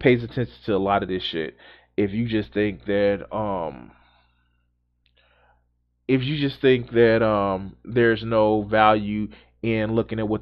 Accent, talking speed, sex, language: American, 155 wpm, male, English